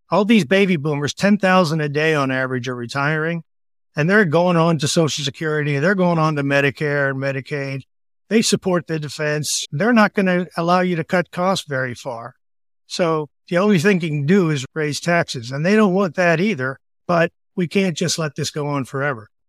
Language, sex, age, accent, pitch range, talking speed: English, male, 50-69, American, 140-175 Hz, 200 wpm